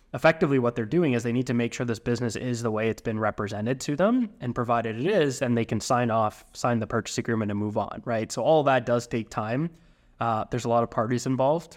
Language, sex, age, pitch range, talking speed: English, male, 20-39, 110-125 Hz, 255 wpm